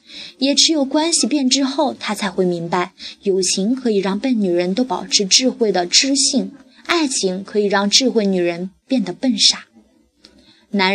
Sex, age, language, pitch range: female, 20-39, Chinese, 185-250 Hz